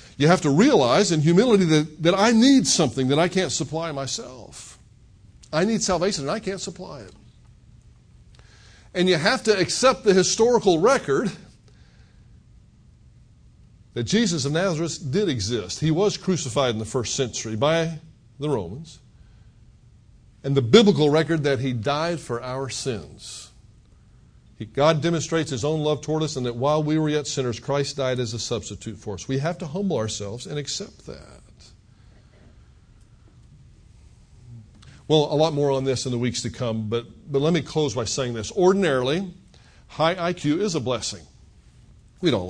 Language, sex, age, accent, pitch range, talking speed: English, male, 50-69, American, 115-165 Hz, 160 wpm